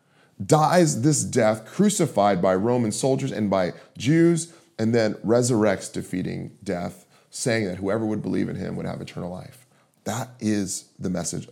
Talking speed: 155 wpm